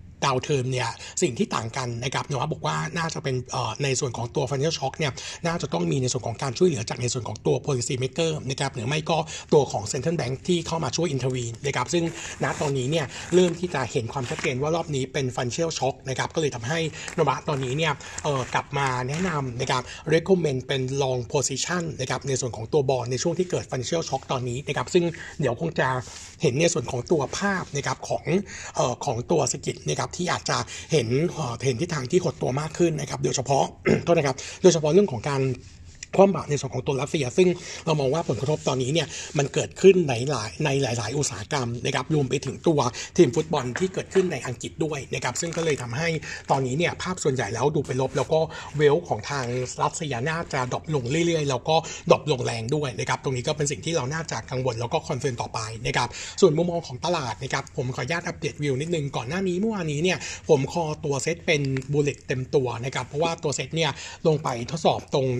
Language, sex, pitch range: Thai, male, 130-160 Hz